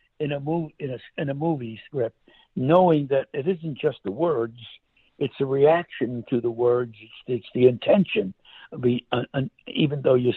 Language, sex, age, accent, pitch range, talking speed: English, male, 60-79, American, 130-180 Hz, 185 wpm